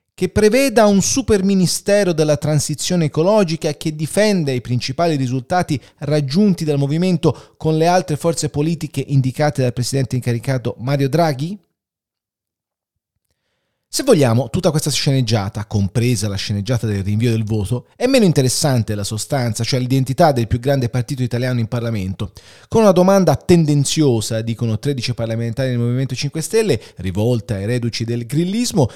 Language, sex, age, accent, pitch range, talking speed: Italian, male, 30-49, native, 115-155 Hz, 145 wpm